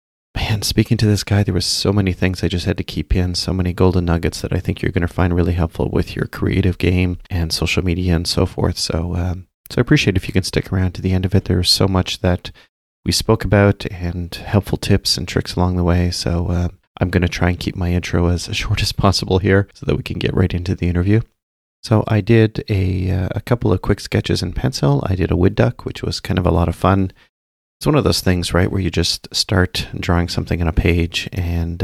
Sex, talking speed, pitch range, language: male, 255 wpm, 85-95 Hz, English